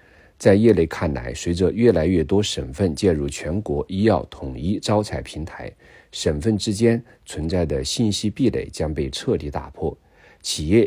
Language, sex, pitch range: Chinese, male, 75-105 Hz